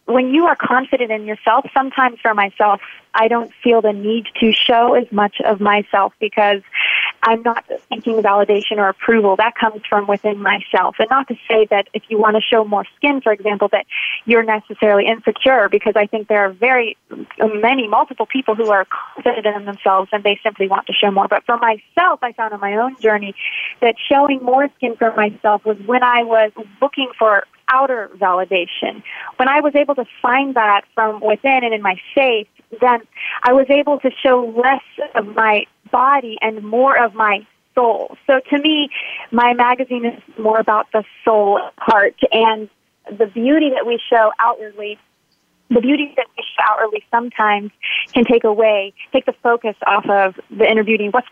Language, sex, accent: English, female, American